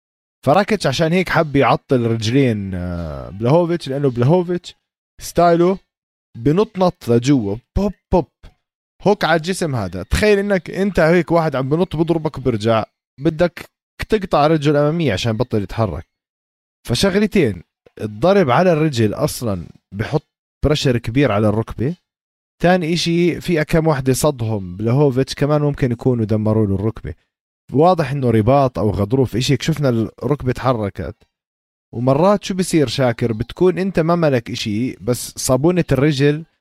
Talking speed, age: 130 wpm, 20-39